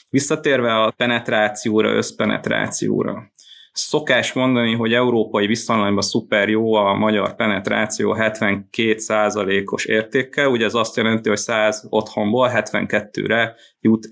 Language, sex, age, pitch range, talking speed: Hungarian, male, 20-39, 110-125 Hz, 105 wpm